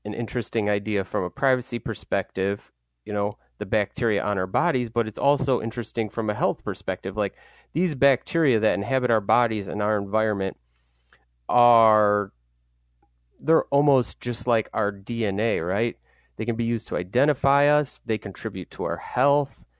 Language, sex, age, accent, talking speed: English, male, 30-49, American, 155 wpm